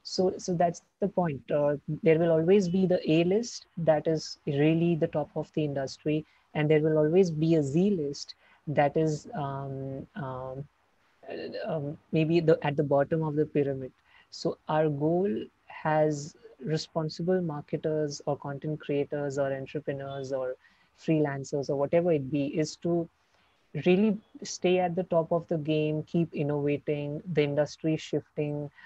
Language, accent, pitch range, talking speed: Hindi, native, 145-165 Hz, 155 wpm